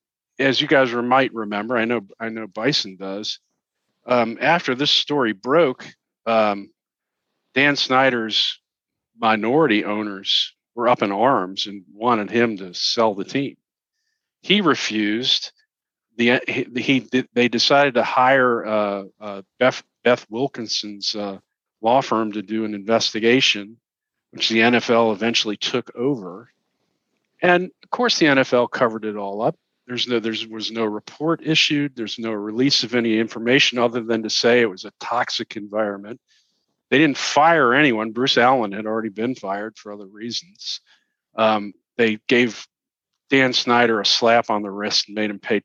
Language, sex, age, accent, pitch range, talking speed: English, male, 40-59, American, 105-130 Hz, 155 wpm